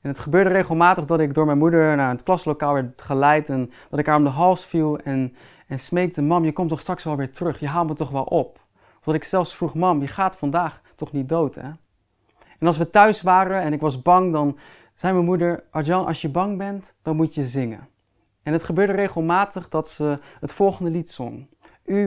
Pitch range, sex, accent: 140-180 Hz, male, Dutch